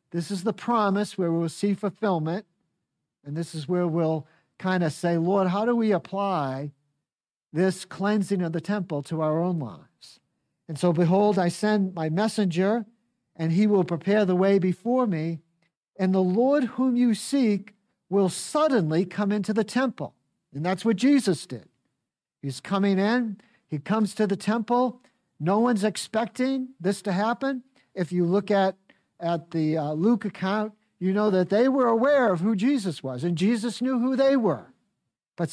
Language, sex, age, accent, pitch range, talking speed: English, male, 50-69, American, 165-225 Hz, 170 wpm